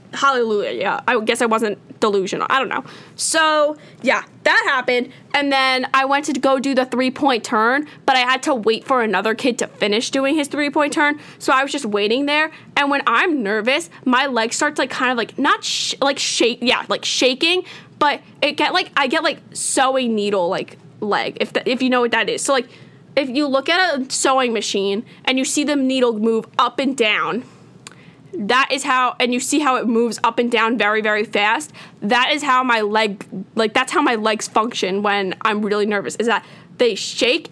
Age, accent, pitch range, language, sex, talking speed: 10-29, American, 215-270 Hz, English, female, 215 wpm